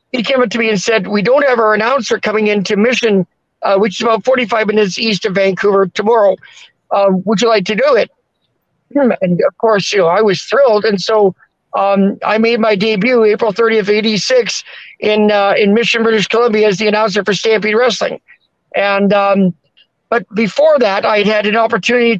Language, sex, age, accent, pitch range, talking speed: English, male, 50-69, American, 205-230 Hz, 190 wpm